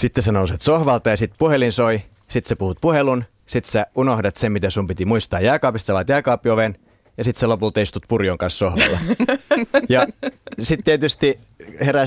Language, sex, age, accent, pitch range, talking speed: Finnish, male, 30-49, native, 95-130 Hz, 175 wpm